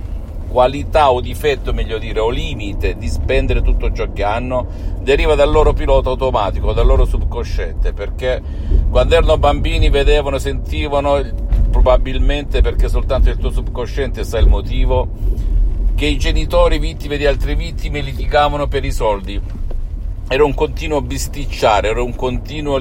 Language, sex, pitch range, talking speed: Italian, male, 80-125 Hz, 140 wpm